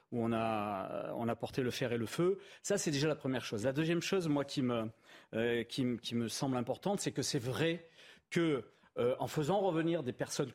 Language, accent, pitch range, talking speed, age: French, French, 135-180 Hz, 230 wpm, 40-59